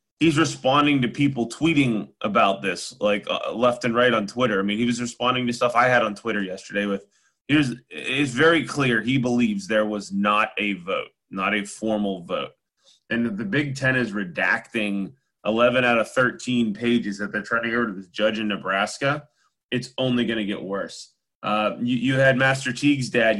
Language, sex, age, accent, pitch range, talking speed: English, male, 20-39, American, 105-125 Hz, 195 wpm